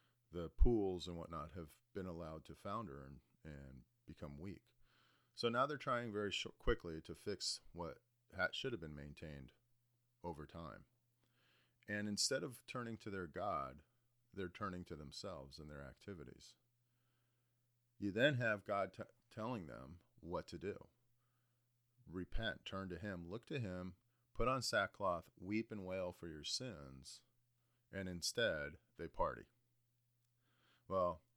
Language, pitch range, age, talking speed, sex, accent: English, 80-120 Hz, 40-59, 140 wpm, male, American